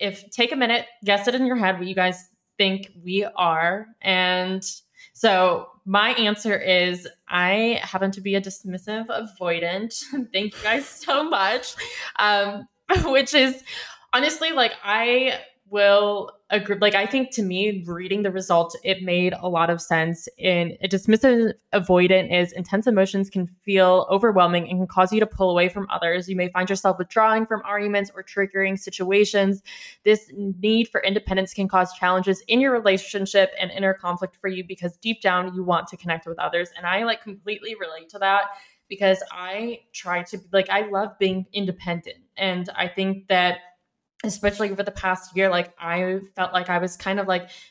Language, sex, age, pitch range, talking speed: English, female, 20-39, 180-205 Hz, 175 wpm